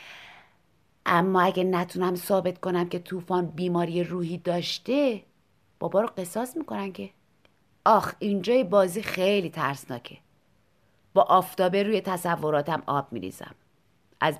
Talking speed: 115 wpm